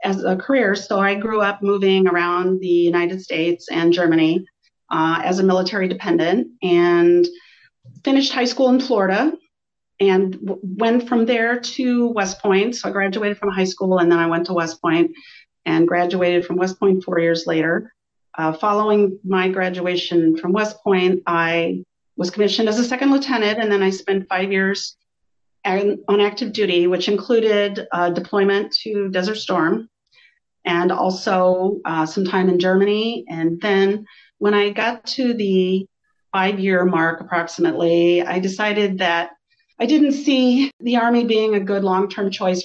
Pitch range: 175-215 Hz